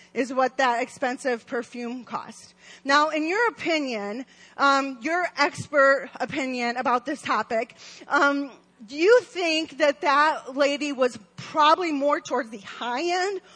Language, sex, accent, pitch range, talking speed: English, female, American, 240-315 Hz, 135 wpm